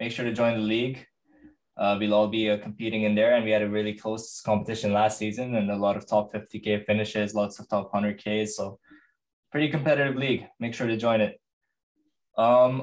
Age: 10-29